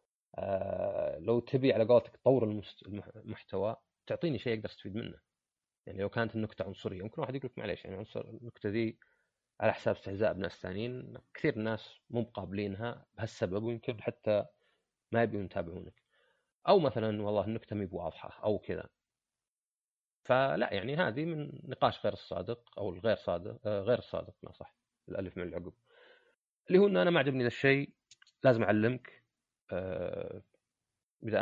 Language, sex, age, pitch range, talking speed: Arabic, male, 30-49, 95-125 Hz, 145 wpm